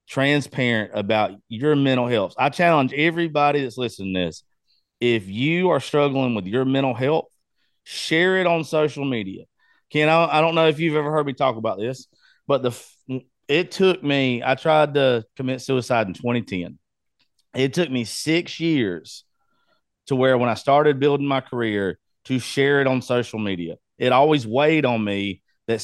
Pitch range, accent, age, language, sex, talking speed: 115-145 Hz, American, 30-49, English, male, 170 wpm